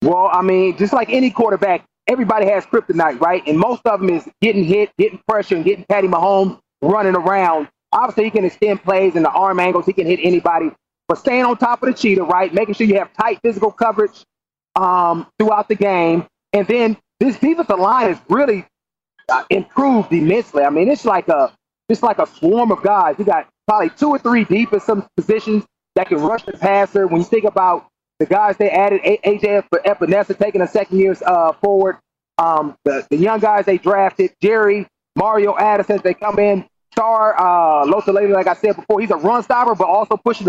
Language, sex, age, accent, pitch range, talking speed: English, male, 30-49, American, 180-220 Hz, 205 wpm